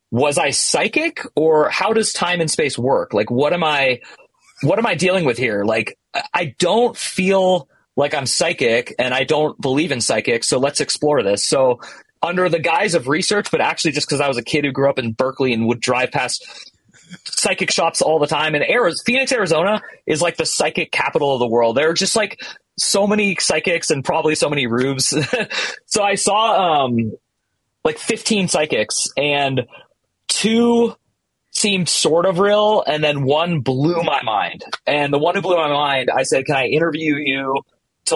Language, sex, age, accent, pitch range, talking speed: English, male, 30-49, American, 135-190 Hz, 190 wpm